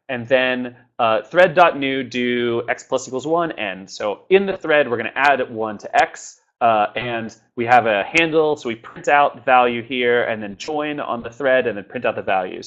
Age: 30-49